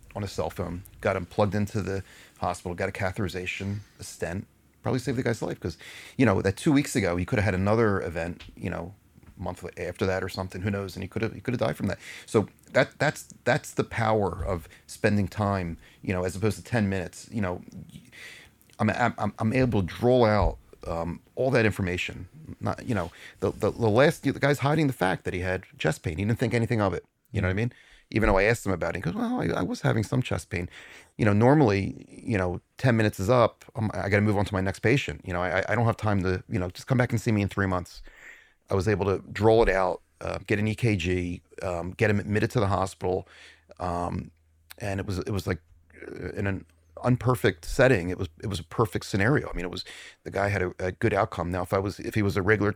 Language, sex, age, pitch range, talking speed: English, male, 30-49, 90-110 Hz, 250 wpm